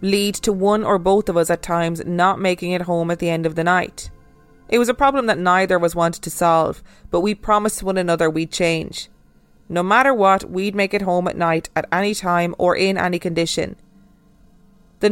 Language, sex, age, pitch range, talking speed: English, female, 20-39, 165-195 Hz, 215 wpm